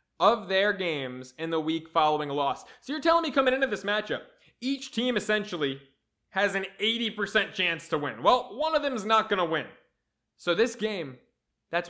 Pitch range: 160-210 Hz